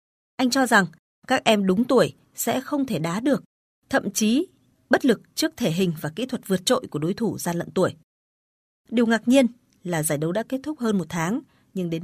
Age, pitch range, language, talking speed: 20-39, 180-235 Hz, Vietnamese, 220 wpm